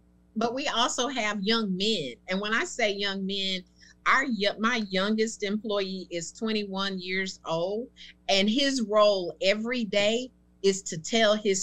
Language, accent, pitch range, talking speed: English, American, 170-220 Hz, 150 wpm